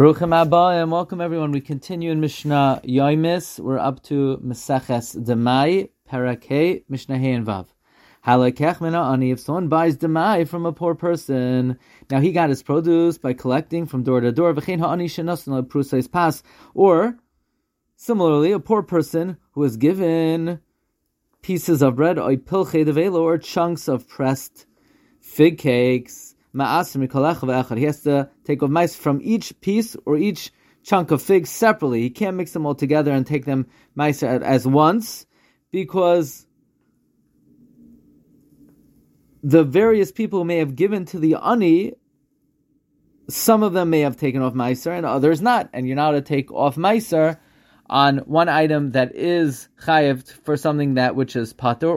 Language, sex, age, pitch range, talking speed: English, male, 30-49, 135-170 Hz, 145 wpm